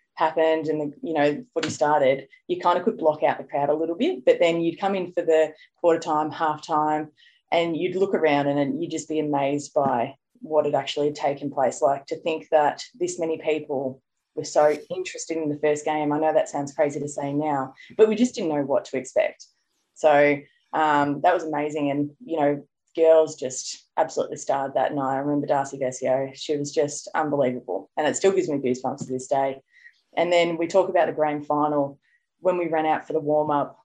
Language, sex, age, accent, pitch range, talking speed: English, female, 20-39, Australian, 145-160 Hz, 215 wpm